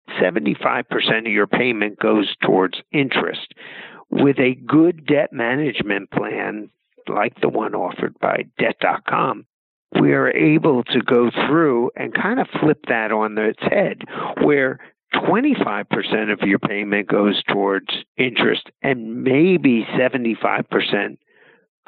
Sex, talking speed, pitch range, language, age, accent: male, 120 wpm, 115-155 Hz, English, 50-69, American